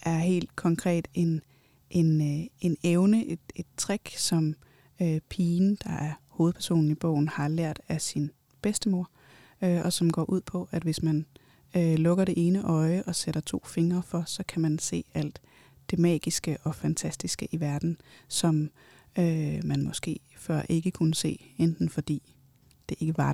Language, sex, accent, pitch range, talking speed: Danish, female, native, 155-180 Hz, 170 wpm